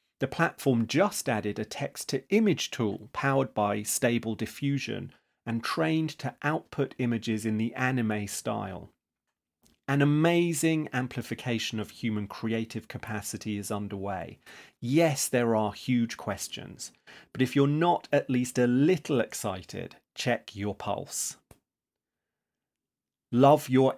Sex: male